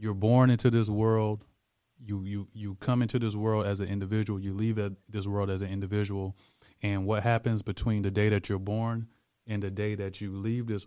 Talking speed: 210 wpm